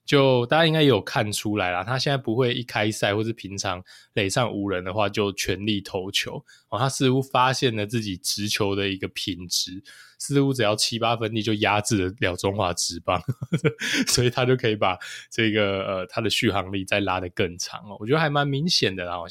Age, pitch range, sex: 20-39, 95-135 Hz, male